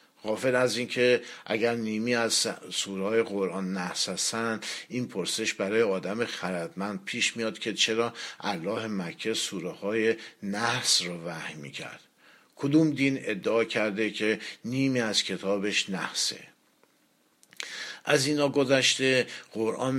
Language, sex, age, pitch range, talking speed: Persian, male, 50-69, 105-130 Hz, 115 wpm